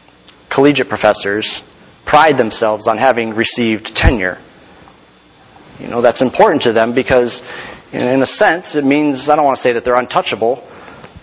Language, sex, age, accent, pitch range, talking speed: English, male, 40-59, American, 120-165 Hz, 150 wpm